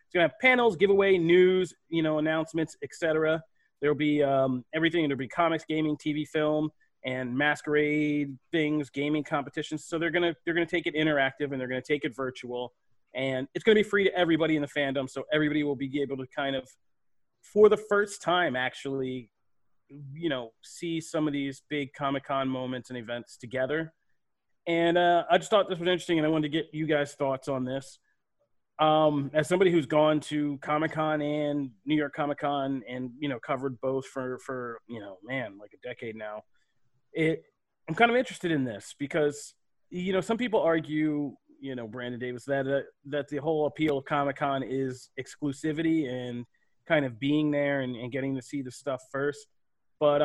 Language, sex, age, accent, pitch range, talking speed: English, male, 30-49, American, 135-160 Hz, 195 wpm